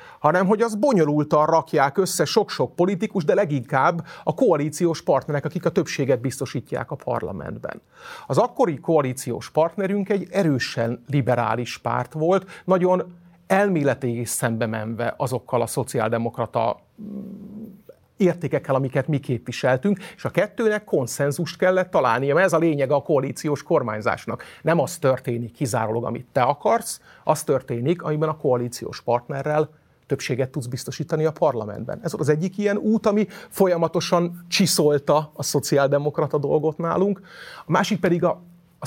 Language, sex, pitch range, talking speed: Hungarian, male, 120-175 Hz, 135 wpm